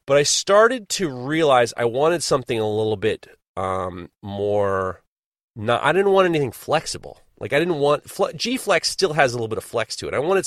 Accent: American